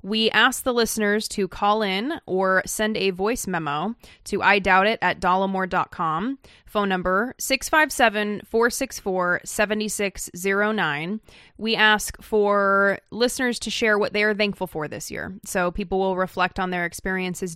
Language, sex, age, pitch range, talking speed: English, female, 20-39, 180-215 Hz, 140 wpm